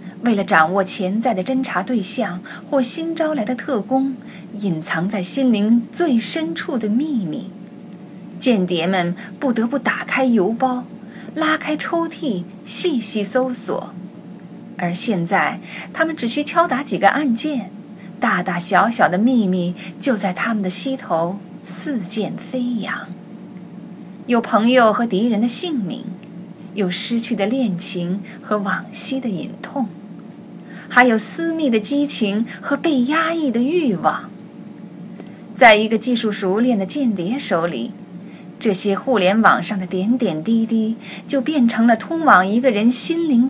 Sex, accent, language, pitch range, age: female, native, Chinese, 195-255 Hz, 30-49